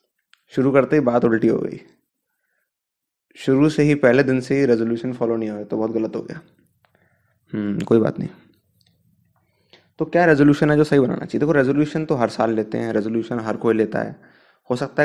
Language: Hindi